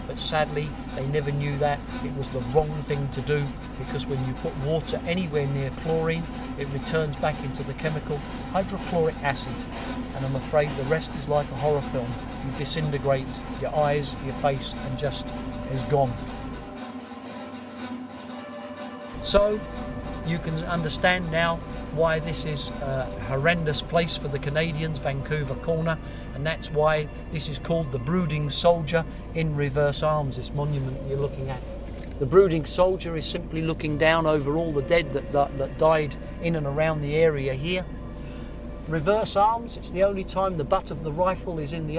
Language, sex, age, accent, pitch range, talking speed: English, male, 40-59, British, 135-160 Hz, 165 wpm